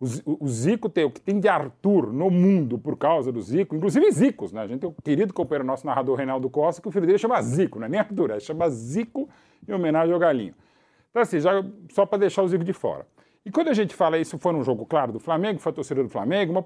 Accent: Brazilian